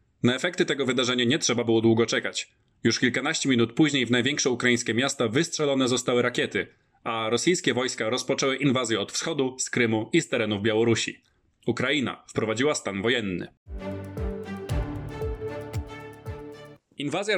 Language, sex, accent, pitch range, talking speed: Polish, male, native, 115-140 Hz, 130 wpm